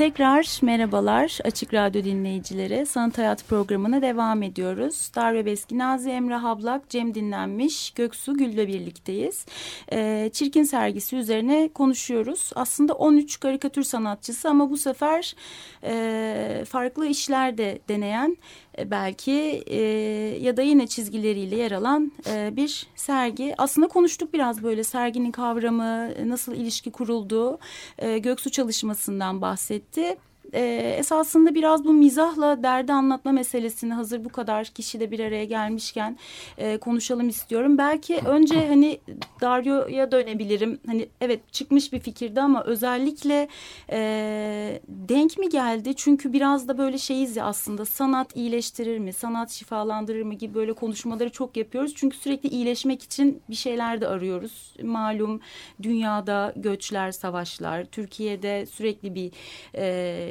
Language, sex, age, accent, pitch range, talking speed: Turkish, female, 30-49, native, 215-275 Hz, 125 wpm